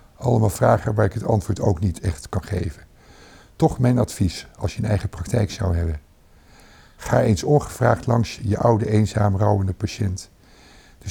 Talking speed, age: 165 wpm, 60-79